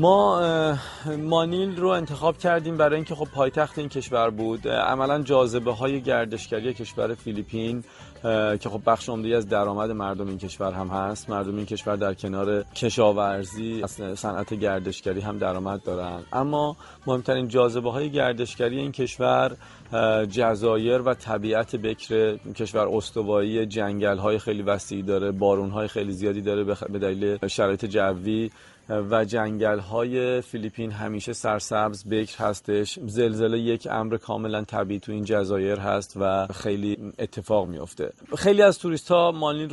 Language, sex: Persian, male